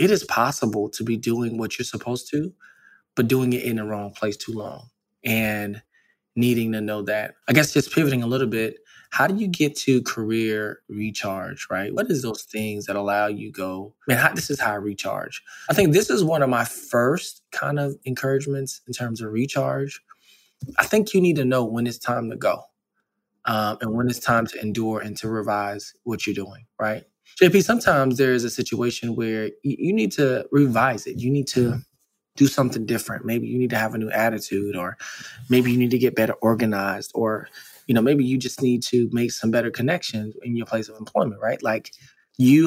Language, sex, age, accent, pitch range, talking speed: English, male, 20-39, American, 110-135 Hz, 210 wpm